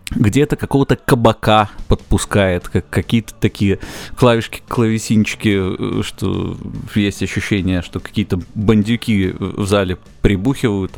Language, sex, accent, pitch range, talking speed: Russian, male, native, 95-110 Hz, 95 wpm